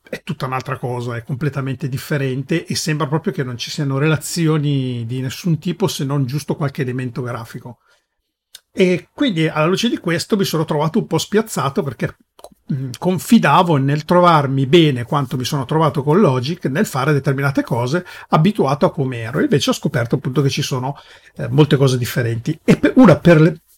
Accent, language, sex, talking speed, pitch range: native, Italian, male, 175 wpm, 135-170 Hz